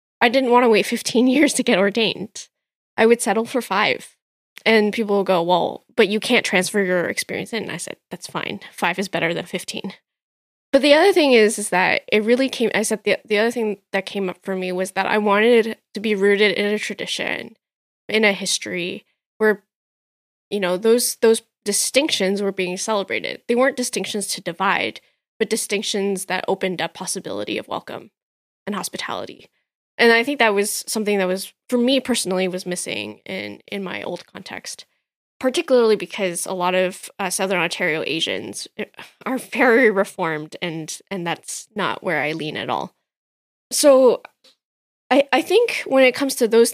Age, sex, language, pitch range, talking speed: 10-29, female, English, 195-240 Hz, 185 wpm